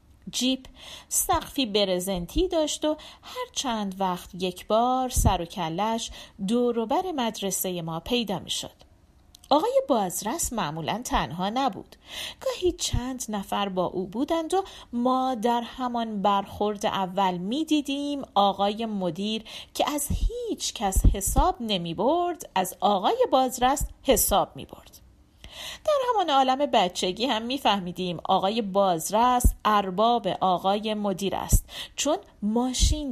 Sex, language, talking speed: female, Persian, 120 wpm